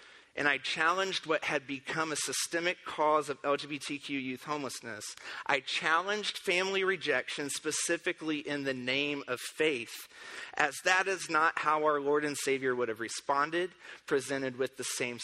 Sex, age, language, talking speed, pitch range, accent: male, 30-49, English, 155 wpm, 125-165 Hz, American